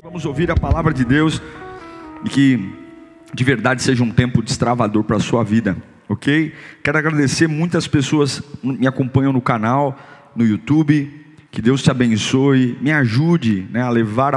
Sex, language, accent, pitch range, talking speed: male, Portuguese, Brazilian, 115-150 Hz, 165 wpm